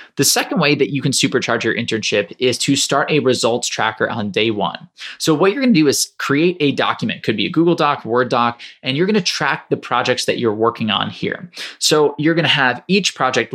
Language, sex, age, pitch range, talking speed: English, male, 20-39, 120-145 Hz, 225 wpm